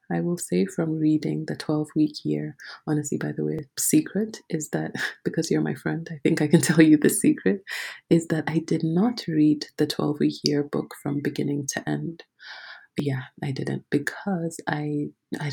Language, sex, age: English, female, 20-39